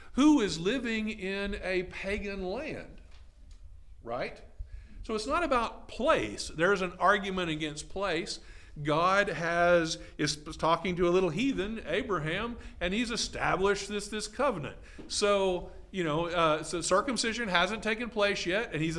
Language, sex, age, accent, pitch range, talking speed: English, male, 50-69, American, 130-200 Hz, 140 wpm